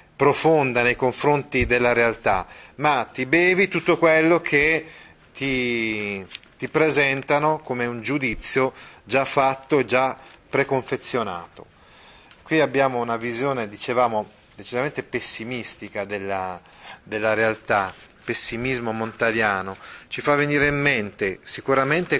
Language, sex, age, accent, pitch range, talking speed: Italian, male, 30-49, native, 110-145 Hz, 110 wpm